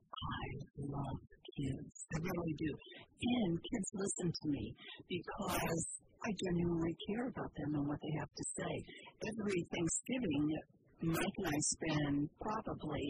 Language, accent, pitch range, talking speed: English, American, 155-215 Hz, 140 wpm